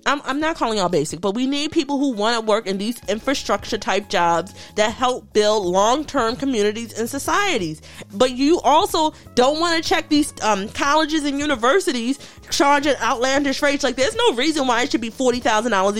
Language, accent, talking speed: English, American, 190 wpm